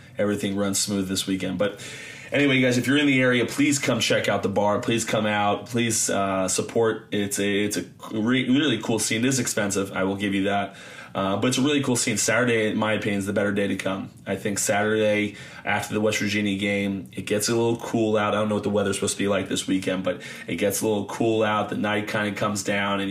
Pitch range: 100-115 Hz